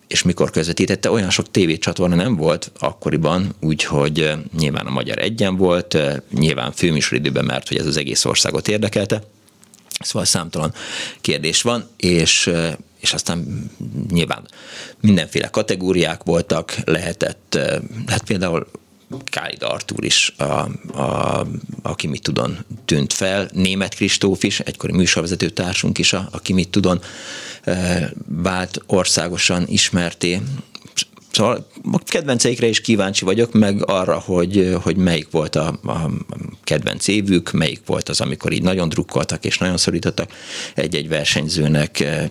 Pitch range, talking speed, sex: 80-100 Hz, 120 wpm, male